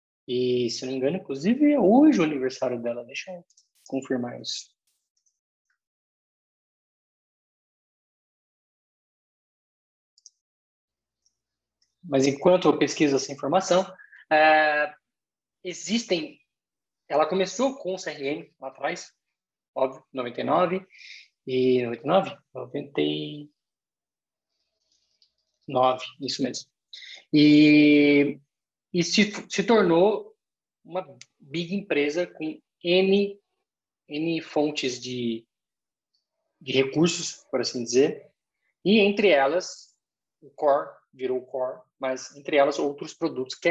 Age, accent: 20-39, Brazilian